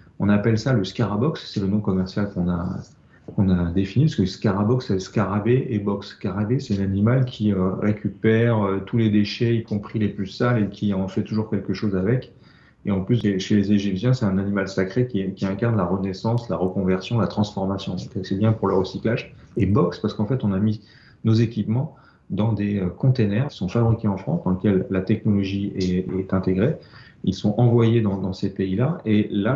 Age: 40-59